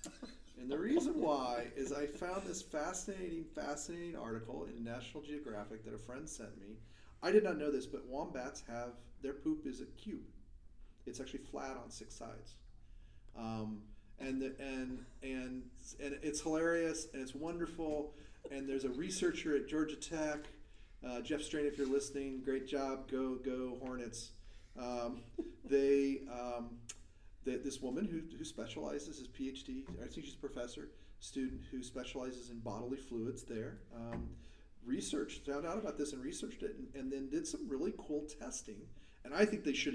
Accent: American